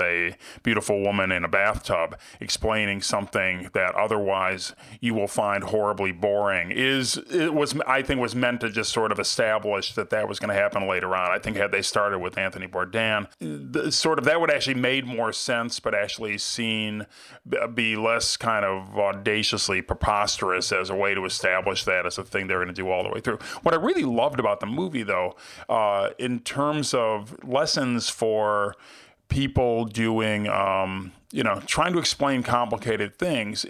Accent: American